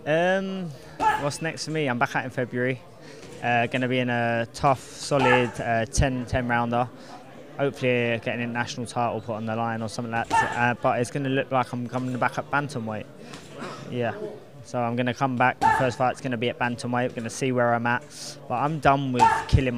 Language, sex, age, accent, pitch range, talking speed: English, male, 20-39, British, 120-135 Hz, 230 wpm